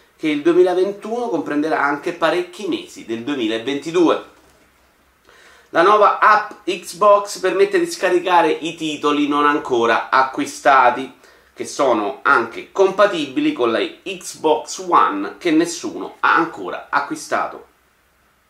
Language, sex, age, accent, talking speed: Italian, male, 30-49, native, 110 wpm